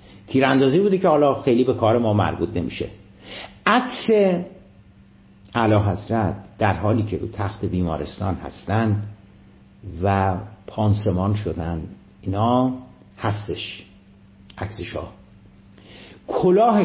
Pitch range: 100-125 Hz